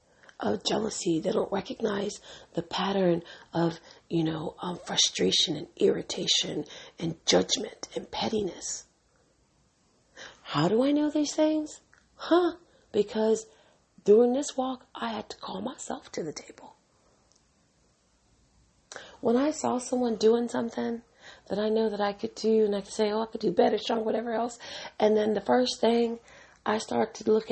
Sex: female